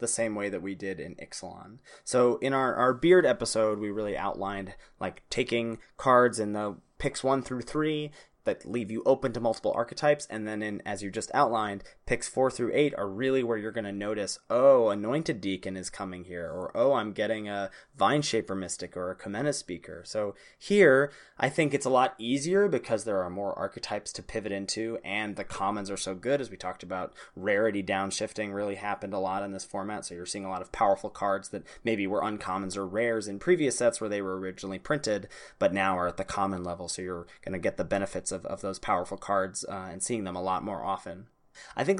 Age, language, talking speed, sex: 20-39, English, 220 wpm, male